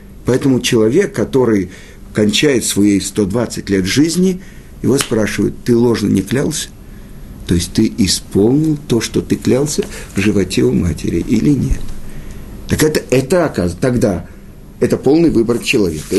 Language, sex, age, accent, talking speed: Russian, male, 50-69, native, 135 wpm